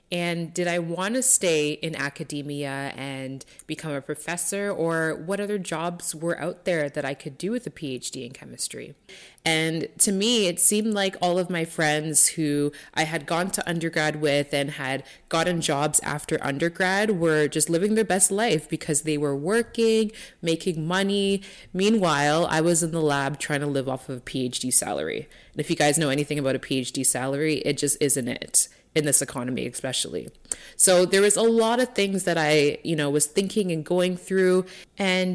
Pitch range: 145-185 Hz